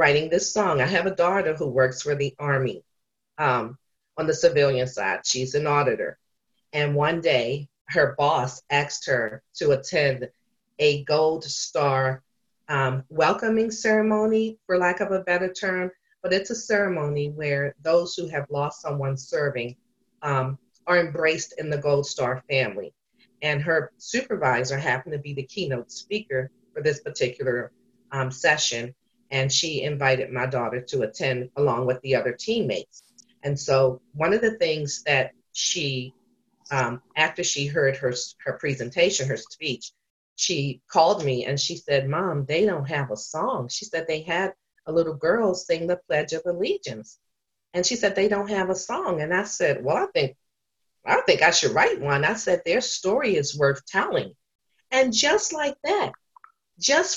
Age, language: 40-59, English